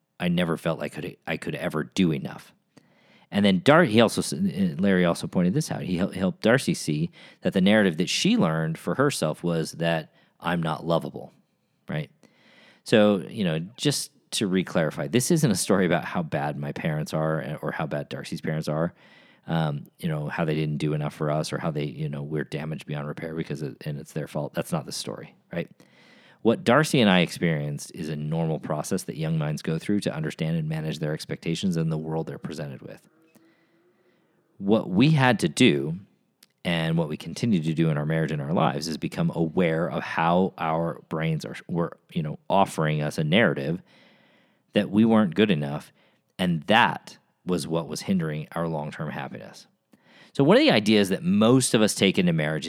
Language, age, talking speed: English, 40-59, 200 wpm